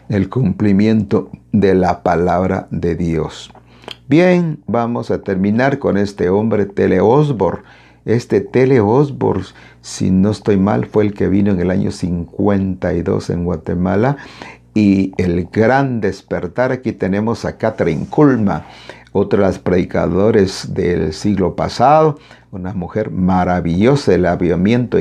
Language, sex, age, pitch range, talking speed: Spanish, male, 50-69, 90-120 Hz, 130 wpm